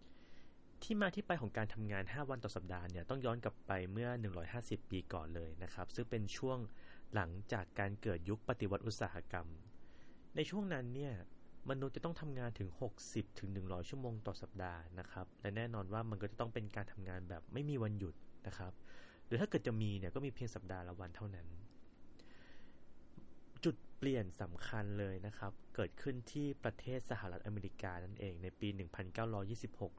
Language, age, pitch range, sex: Thai, 20-39, 90-120 Hz, male